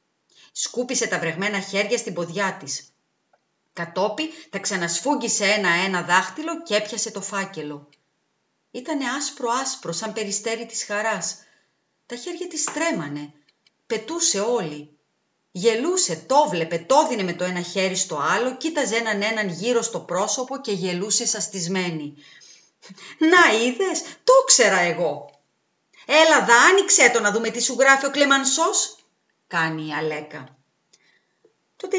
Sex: female